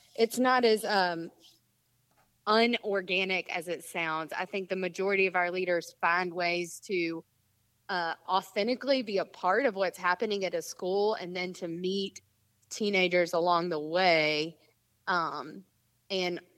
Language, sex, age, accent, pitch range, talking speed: English, female, 30-49, American, 160-190 Hz, 140 wpm